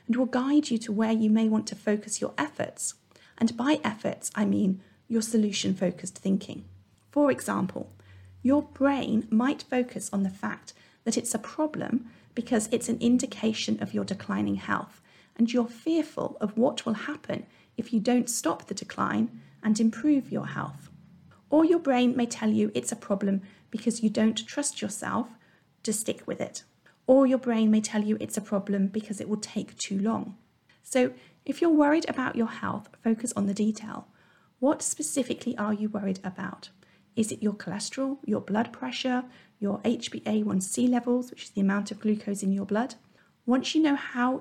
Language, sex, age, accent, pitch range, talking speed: English, female, 40-59, British, 205-250 Hz, 180 wpm